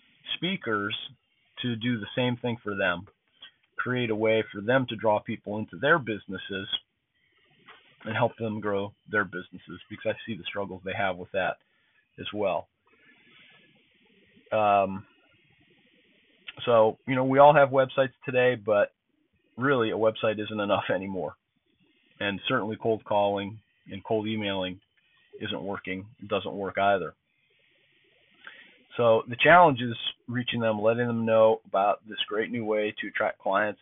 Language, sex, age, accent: English, male, 40-59, American